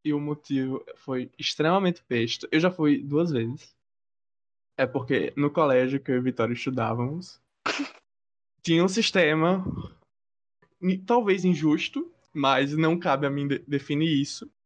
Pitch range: 135-170 Hz